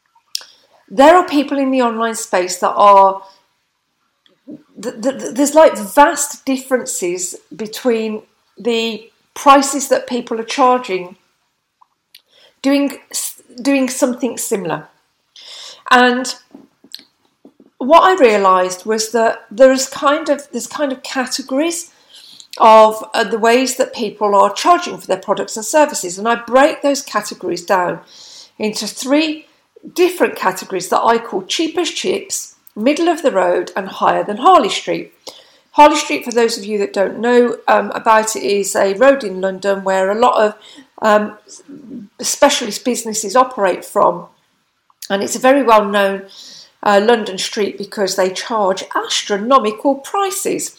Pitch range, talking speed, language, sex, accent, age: 210-280 Hz, 135 wpm, English, female, British, 50-69